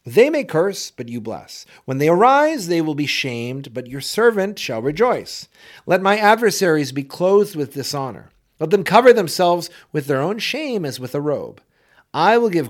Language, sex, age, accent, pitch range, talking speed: English, male, 40-59, American, 135-200 Hz, 190 wpm